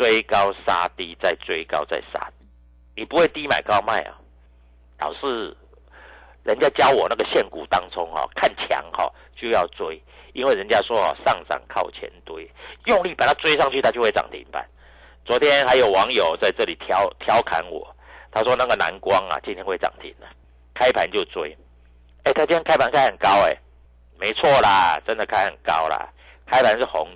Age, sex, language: 50-69, male, Chinese